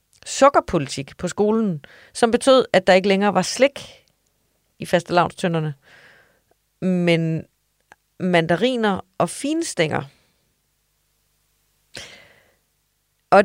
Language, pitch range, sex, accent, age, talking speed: Danish, 155-195 Hz, female, native, 30-49, 80 wpm